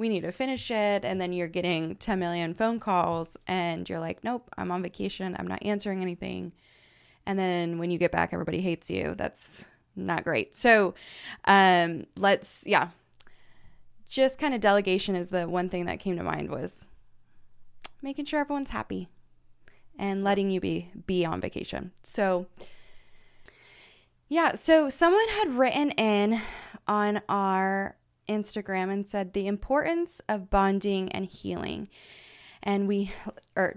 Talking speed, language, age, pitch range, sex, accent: 150 wpm, English, 20-39, 180-225 Hz, female, American